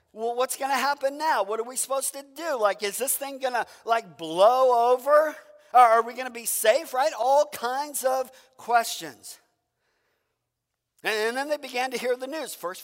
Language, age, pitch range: English, 50-69, 180-270 Hz